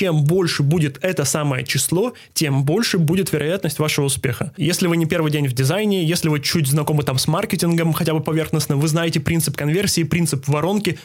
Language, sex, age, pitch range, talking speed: Russian, male, 20-39, 145-170 Hz, 190 wpm